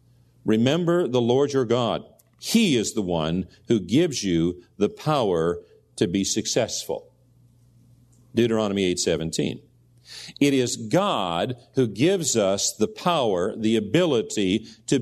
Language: English